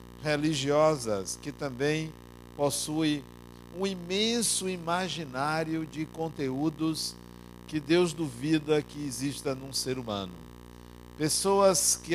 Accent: Brazilian